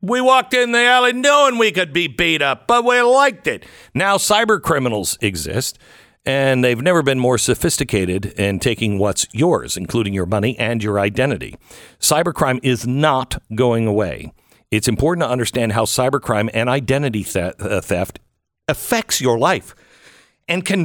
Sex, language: male, English